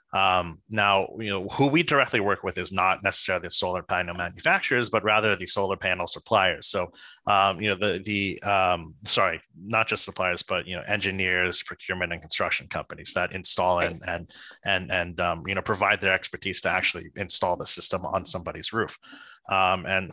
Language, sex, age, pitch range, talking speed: English, male, 30-49, 95-105 Hz, 185 wpm